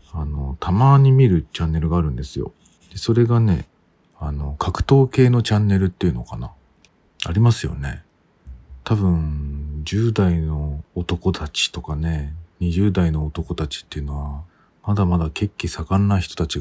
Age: 40-59